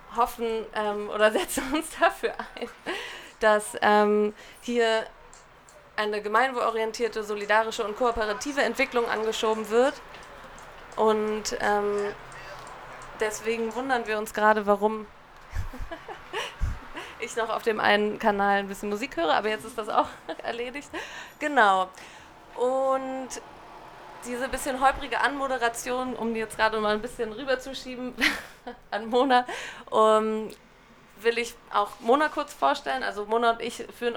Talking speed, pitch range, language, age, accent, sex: 120 wpm, 210-240 Hz, German, 20-39, German, female